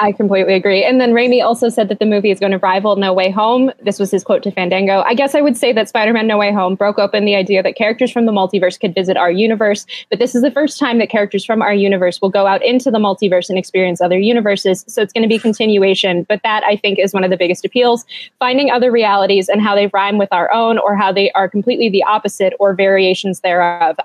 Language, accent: English, American